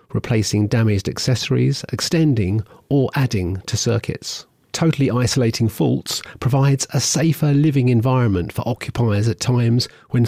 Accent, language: British, English